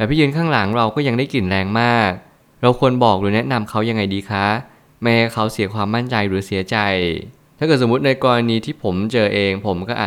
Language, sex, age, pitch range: Thai, male, 20-39, 105-125 Hz